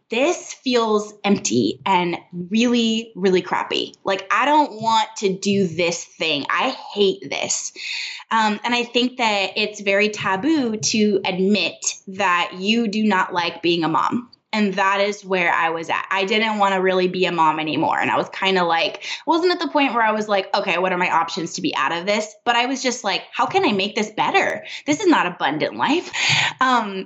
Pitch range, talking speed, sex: 185-235 Hz, 205 wpm, female